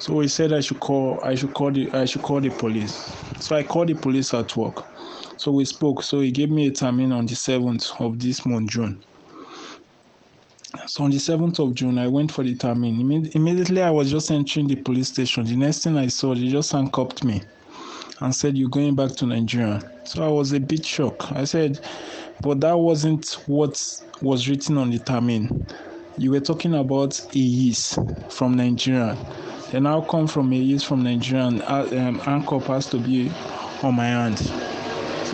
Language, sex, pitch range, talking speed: German, male, 125-150 Hz, 195 wpm